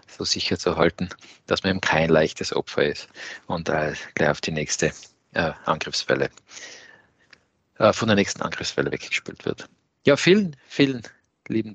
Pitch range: 95-120 Hz